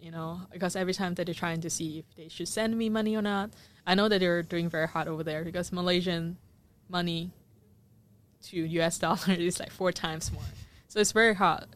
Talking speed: 215 wpm